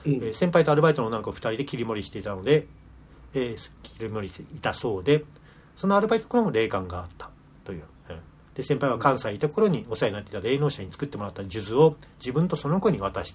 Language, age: Japanese, 40-59